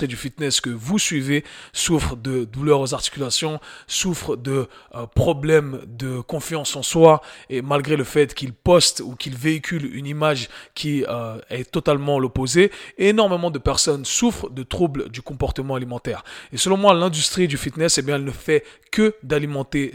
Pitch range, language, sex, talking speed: 130-160 Hz, French, male, 170 wpm